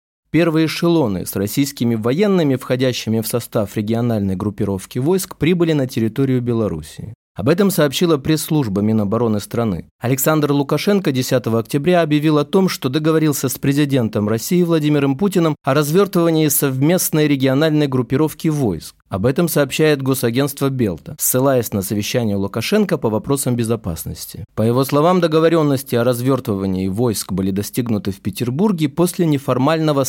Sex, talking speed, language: male, 130 wpm, Russian